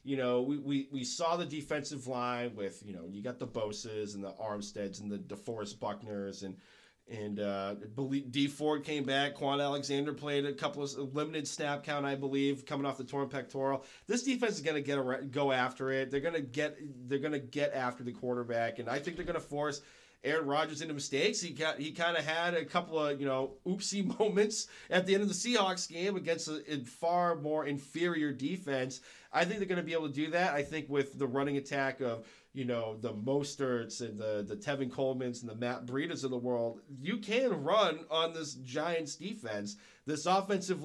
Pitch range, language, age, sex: 125-155 Hz, English, 30-49, male